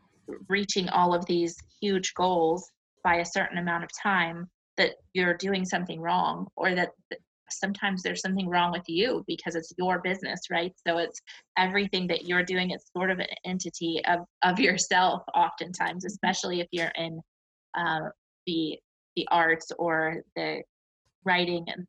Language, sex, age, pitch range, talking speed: English, female, 20-39, 170-195 Hz, 160 wpm